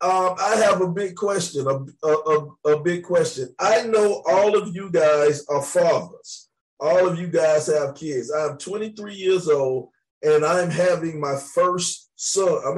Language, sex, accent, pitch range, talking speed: English, male, American, 145-200 Hz, 170 wpm